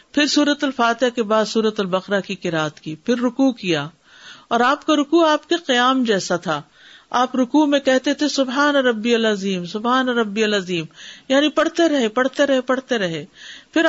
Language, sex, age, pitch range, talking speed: Urdu, female, 50-69, 190-255 Hz, 185 wpm